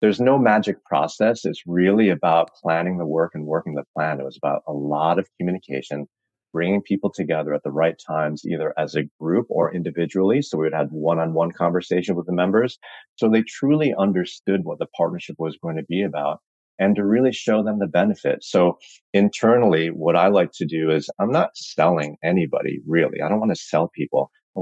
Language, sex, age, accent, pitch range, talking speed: English, male, 30-49, American, 80-95 Hz, 195 wpm